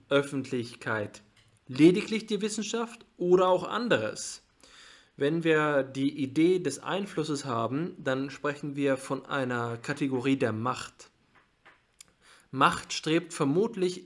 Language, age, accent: German, 20-39, German